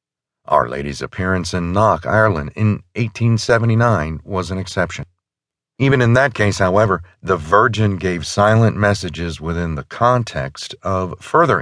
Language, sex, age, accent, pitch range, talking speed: English, male, 50-69, American, 85-120 Hz, 135 wpm